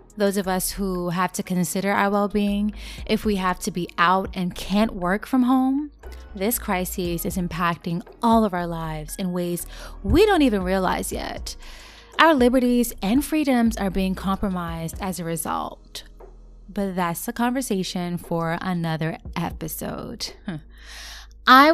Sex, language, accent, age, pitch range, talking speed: female, English, American, 20-39, 180-225 Hz, 145 wpm